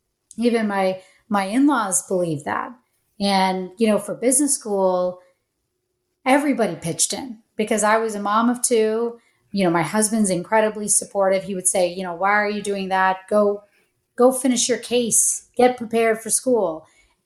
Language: English